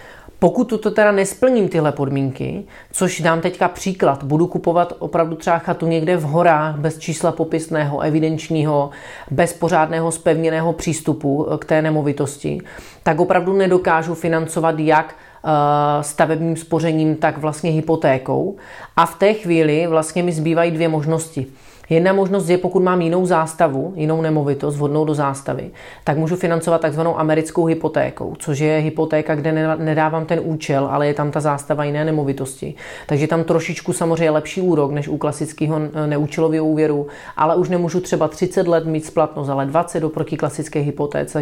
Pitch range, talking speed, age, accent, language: 150-170 Hz, 150 wpm, 30-49, native, Czech